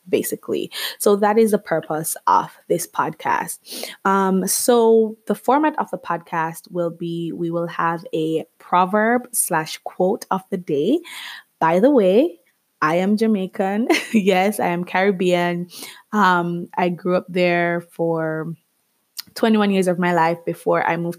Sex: female